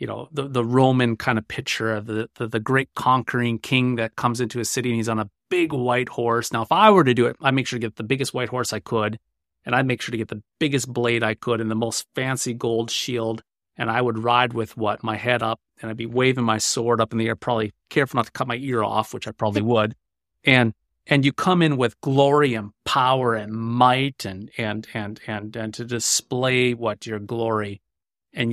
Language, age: English, 30-49